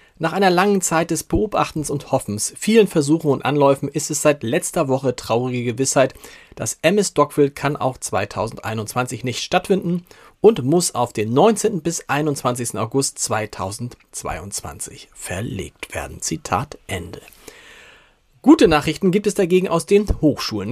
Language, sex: German, male